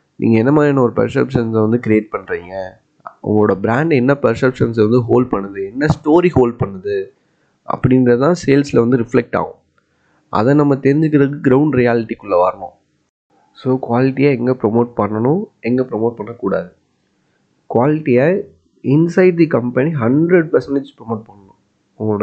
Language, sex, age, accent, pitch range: English, male, 20-39, Indian, 115-155 Hz